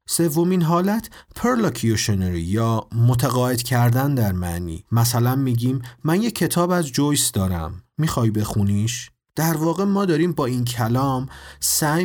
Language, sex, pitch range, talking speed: Persian, male, 105-140 Hz, 130 wpm